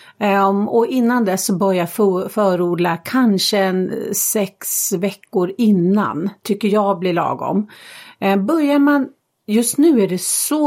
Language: Swedish